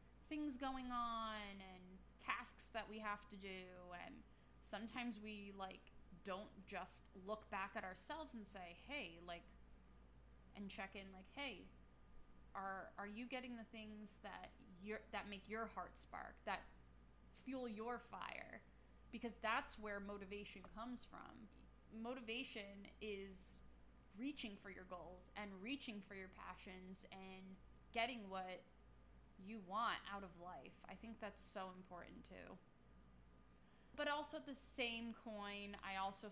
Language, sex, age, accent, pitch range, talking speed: English, female, 20-39, American, 185-225 Hz, 140 wpm